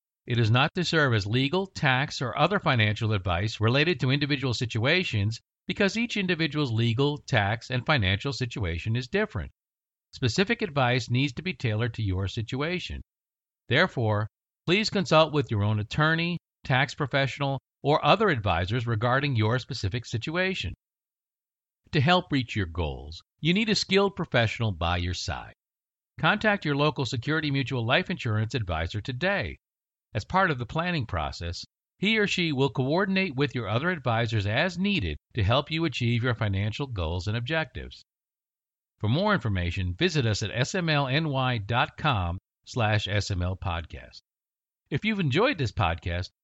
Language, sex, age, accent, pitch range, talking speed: English, male, 60-79, American, 105-160 Hz, 145 wpm